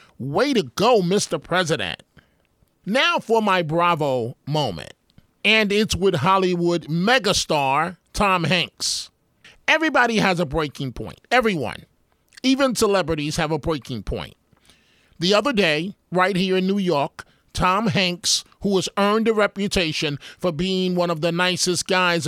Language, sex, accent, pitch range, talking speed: English, male, American, 165-200 Hz, 135 wpm